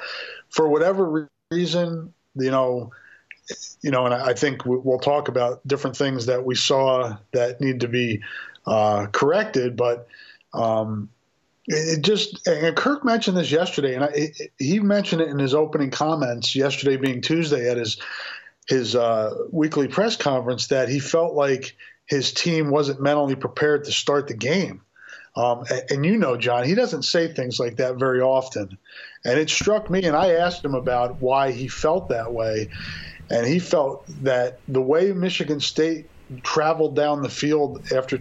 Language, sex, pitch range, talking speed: English, male, 125-160 Hz, 165 wpm